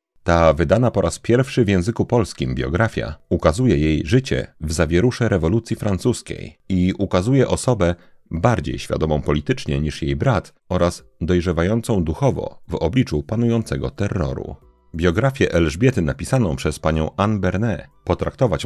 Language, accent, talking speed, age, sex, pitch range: Polish, native, 130 wpm, 40-59, male, 80-115 Hz